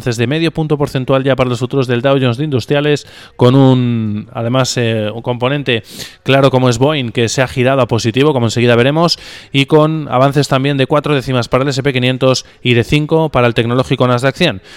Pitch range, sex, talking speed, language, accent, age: 120-140 Hz, male, 205 wpm, Spanish, Spanish, 20-39